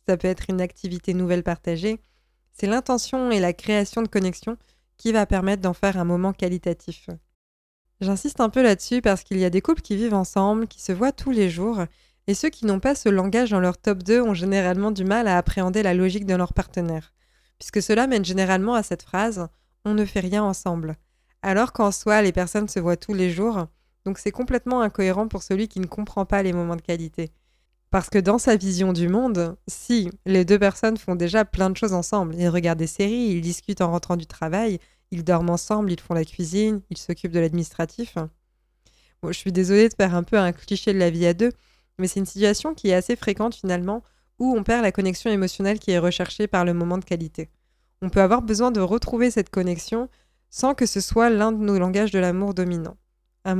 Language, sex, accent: French, female, French